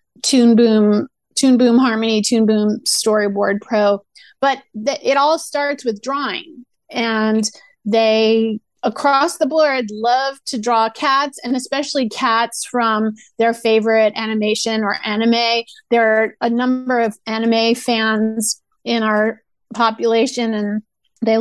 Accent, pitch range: American, 220-270 Hz